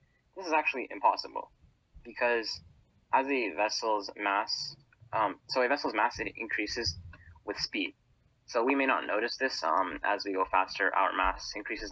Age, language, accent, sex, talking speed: 10-29, English, American, male, 160 wpm